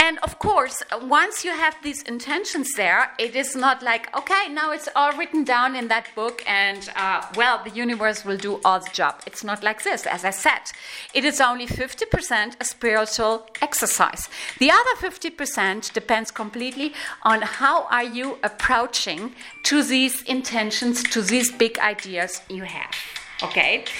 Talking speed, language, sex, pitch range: 165 wpm, English, female, 220-290 Hz